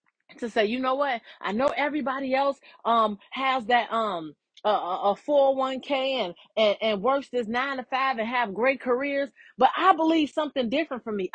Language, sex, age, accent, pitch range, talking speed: English, female, 30-49, American, 225-280 Hz, 185 wpm